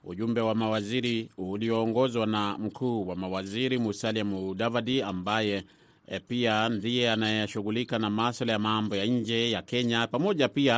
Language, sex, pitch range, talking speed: Swahili, male, 100-120 Hz, 140 wpm